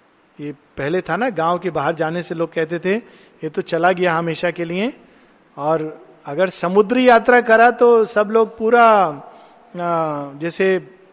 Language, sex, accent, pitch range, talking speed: Hindi, male, native, 170-220 Hz, 155 wpm